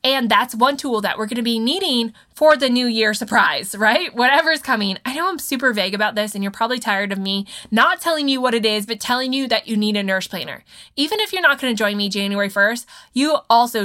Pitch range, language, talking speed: 205-265 Hz, English, 250 wpm